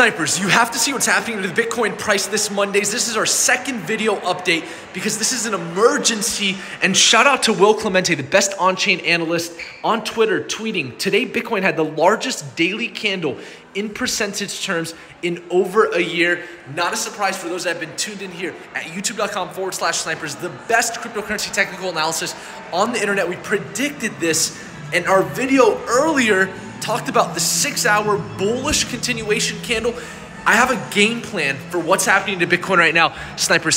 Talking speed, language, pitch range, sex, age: 180 wpm, English, 165-220 Hz, male, 20-39